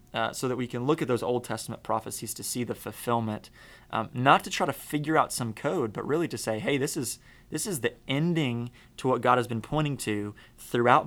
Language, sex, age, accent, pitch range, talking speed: English, male, 20-39, American, 110-125 Hz, 235 wpm